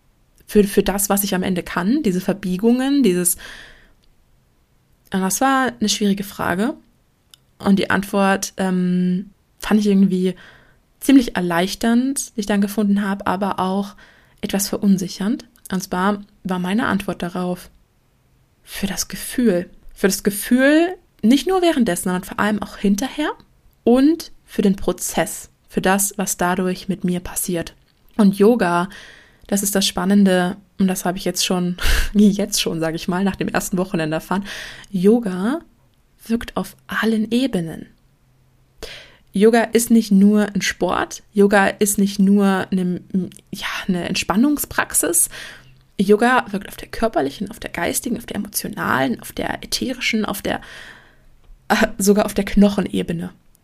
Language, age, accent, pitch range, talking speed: German, 20-39, German, 185-220 Hz, 140 wpm